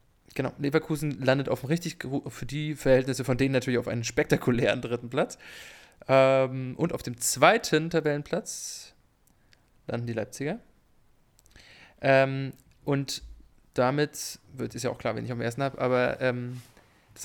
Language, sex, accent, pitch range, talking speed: English, male, German, 120-145 Hz, 145 wpm